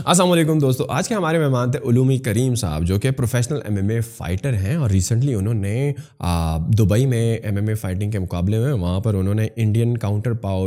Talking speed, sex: 215 wpm, male